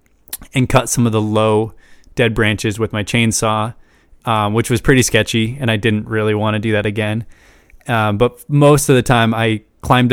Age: 20-39